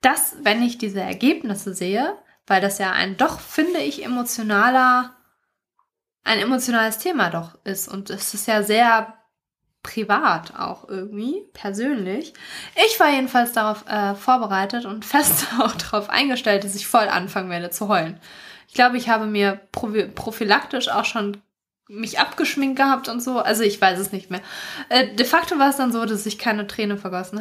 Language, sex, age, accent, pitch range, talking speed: German, female, 20-39, German, 210-270 Hz, 170 wpm